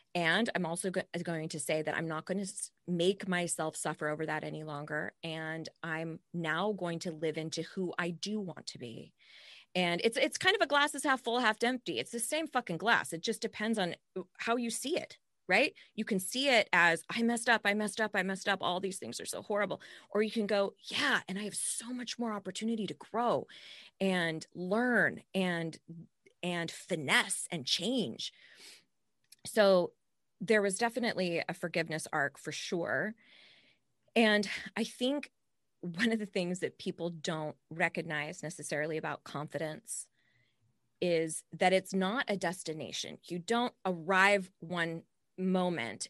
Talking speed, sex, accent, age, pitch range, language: 170 wpm, female, American, 20-39, 165-225 Hz, English